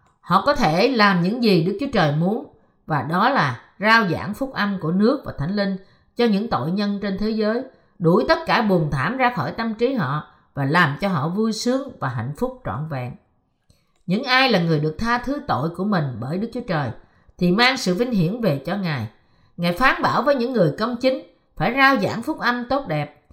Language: Vietnamese